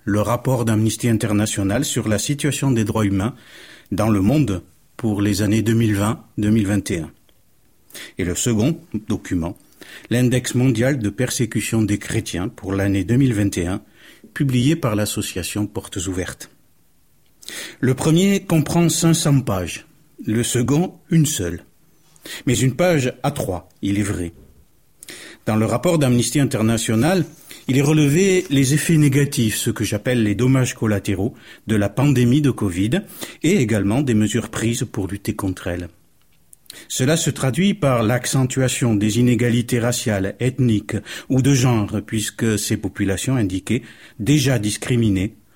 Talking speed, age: 135 wpm, 50-69